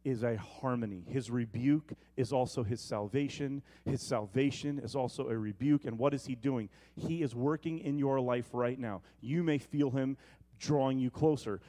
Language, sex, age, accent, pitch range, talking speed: English, male, 30-49, American, 105-140 Hz, 180 wpm